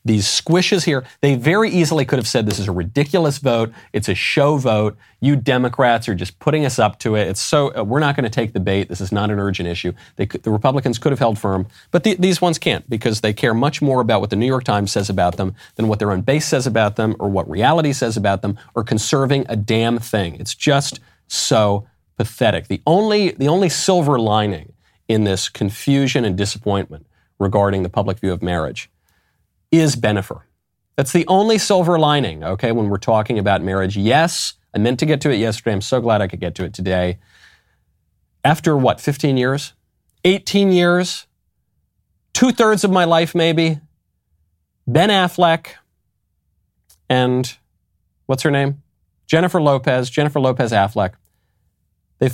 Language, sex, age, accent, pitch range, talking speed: English, male, 40-59, American, 95-145 Hz, 185 wpm